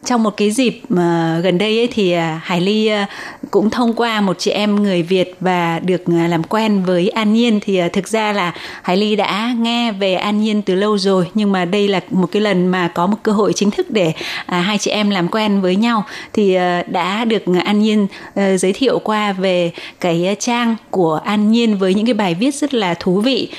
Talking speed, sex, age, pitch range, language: 210 wpm, female, 20-39, 180-225 Hz, Vietnamese